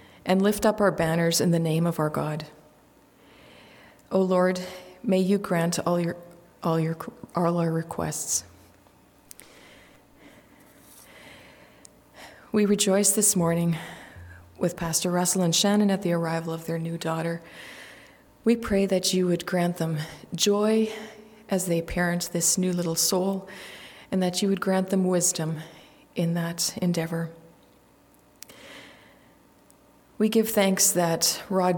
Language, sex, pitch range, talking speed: English, female, 165-195 Hz, 125 wpm